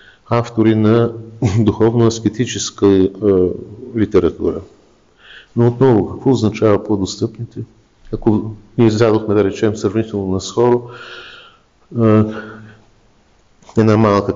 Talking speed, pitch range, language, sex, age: 90 wpm, 100-120 Hz, Bulgarian, male, 50-69